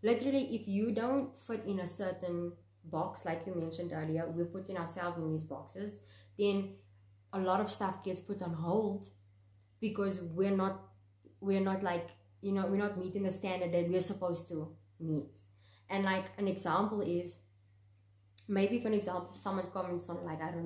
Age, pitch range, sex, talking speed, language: 20-39, 135-200 Hz, female, 175 wpm, English